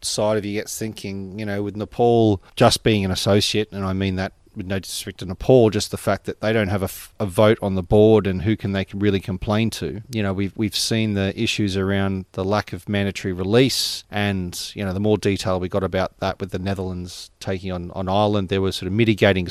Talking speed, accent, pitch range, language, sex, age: 245 wpm, Australian, 95-115 Hz, English, male, 30-49